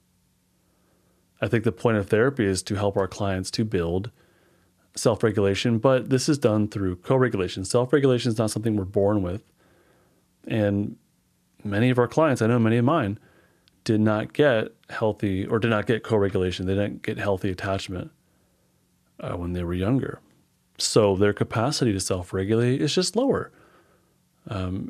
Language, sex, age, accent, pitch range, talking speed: English, male, 30-49, American, 95-120 Hz, 155 wpm